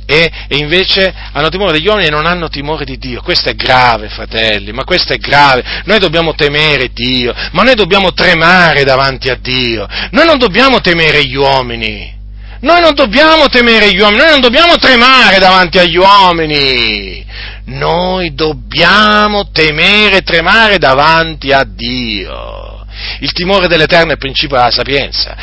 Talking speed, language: 160 wpm, Italian